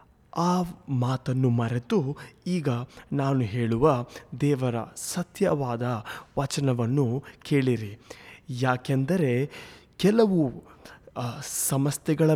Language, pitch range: Kannada, 120-155 Hz